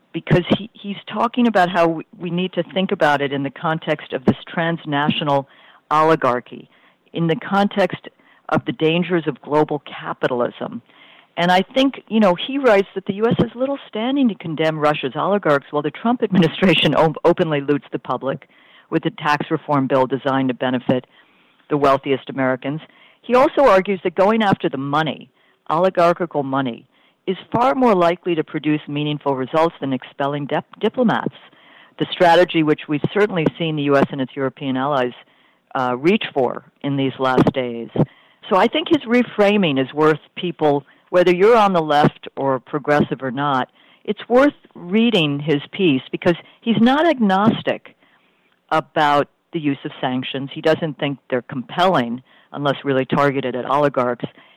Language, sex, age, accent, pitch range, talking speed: English, female, 50-69, American, 140-190 Hz, 160 wpm